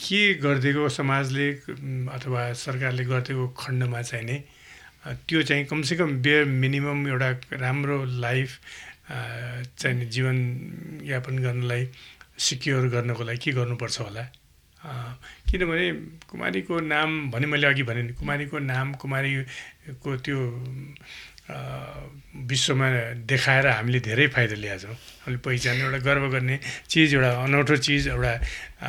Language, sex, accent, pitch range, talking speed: English, male, Indian, 125-145 Hz, 100 wpm